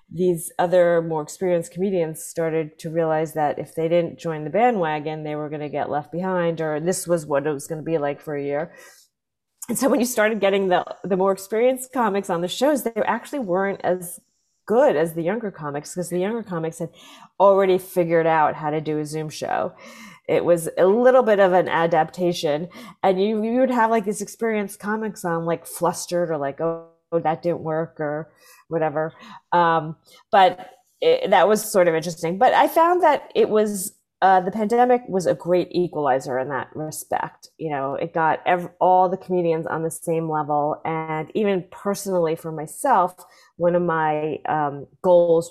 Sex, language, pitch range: female, English, 160-195 Hz